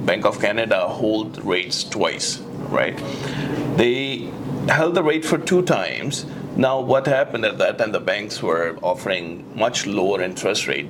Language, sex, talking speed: English, male, 155 wpm